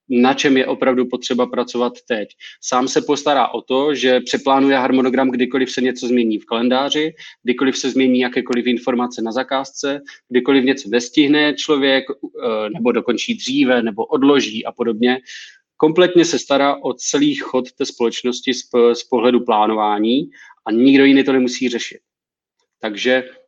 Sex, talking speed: male, 145 wpm